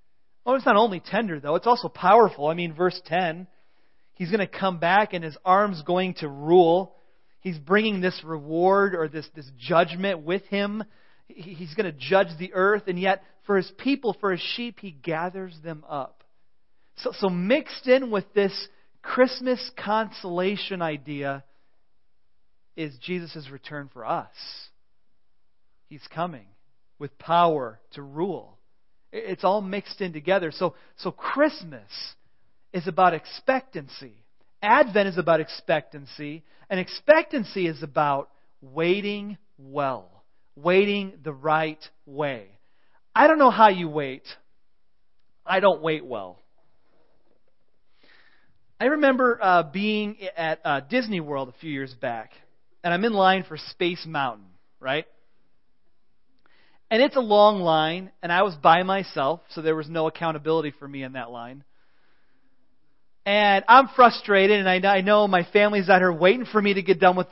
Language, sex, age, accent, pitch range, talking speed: English, male, 40-59, American, 155-205 Hz, 150 wpm